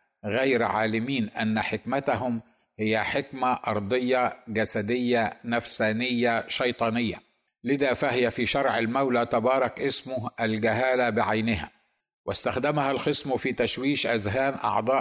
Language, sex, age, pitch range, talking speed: Arabic, male, 50-69, 110-130 Hz, 100 wpm